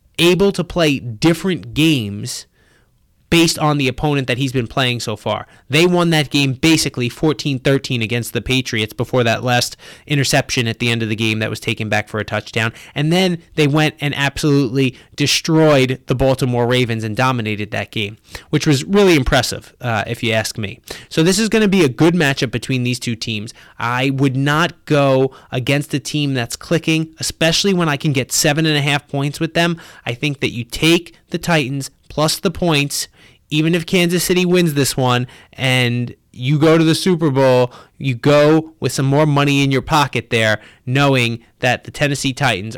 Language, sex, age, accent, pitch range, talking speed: English, male, 20-39, American, 120-160 Hz, 190 wpm